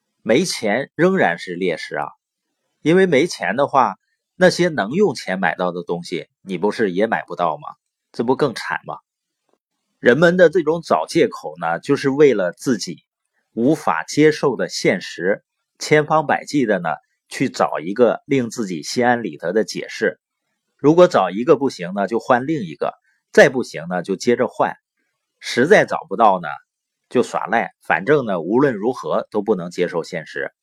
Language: Chinese